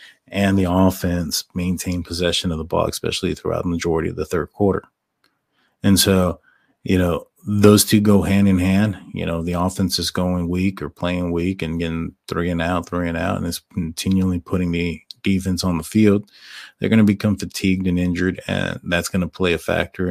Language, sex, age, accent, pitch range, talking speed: English, male, 30-49, American, 85-95 Hz, 200 wpm